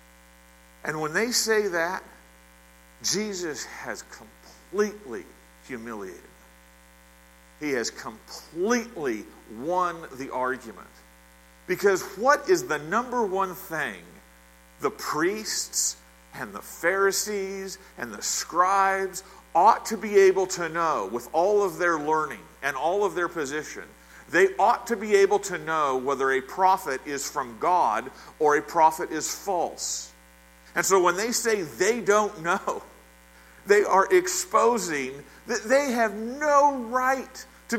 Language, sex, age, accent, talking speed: English, male, 50-69, American, 130 wpm